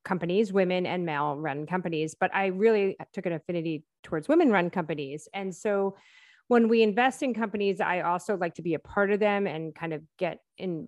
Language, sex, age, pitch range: English, female, 30-49, 170-210 Hz